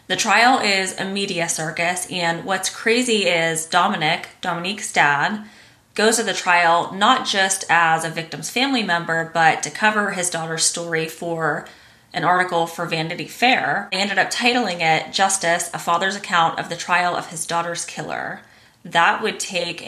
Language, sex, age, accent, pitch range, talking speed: English, female, 20-39, American, 165-195 Hz, 165 wpm